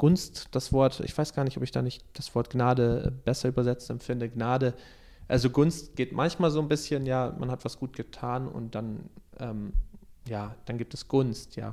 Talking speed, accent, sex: 205 wpm, German, male